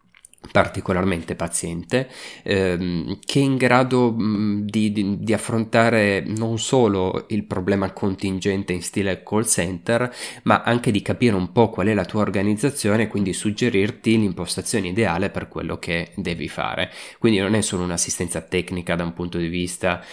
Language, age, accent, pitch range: Italian, 20-39, native, 90-110 Hz